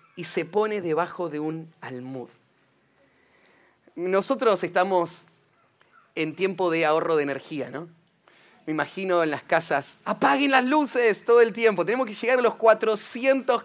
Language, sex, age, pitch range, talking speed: Spanish, male, 30-49, 175-270 Hz, 145 wpm